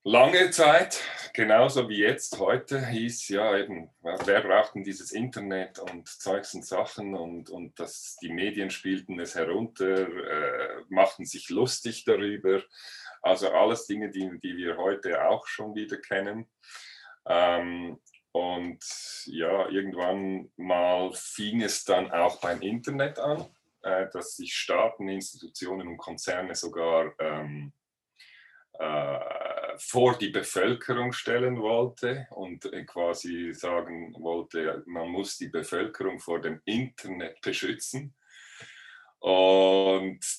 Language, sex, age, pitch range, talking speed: German, male, 30-49, 85-110 Hz, 120 wpm